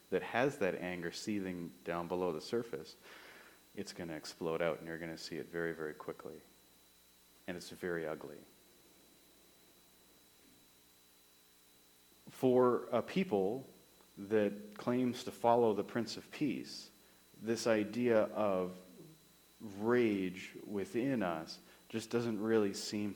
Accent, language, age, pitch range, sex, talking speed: American, English, 40-59, 90-115 Hz, male, 120 wpm